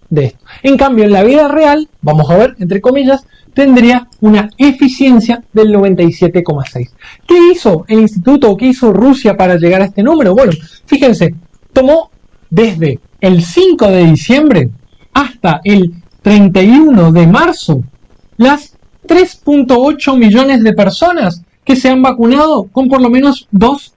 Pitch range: 175-265 Hz